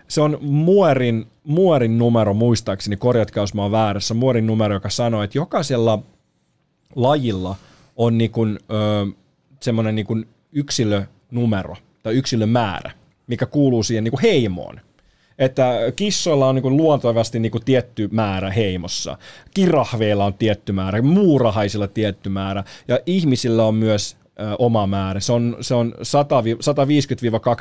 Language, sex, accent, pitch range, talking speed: Finnish, male, native, 105-130 Hz, 115 wpm